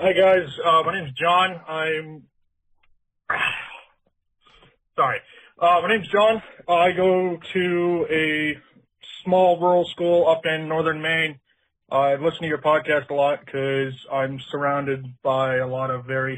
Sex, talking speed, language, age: male, 145 wpm, English, 20-39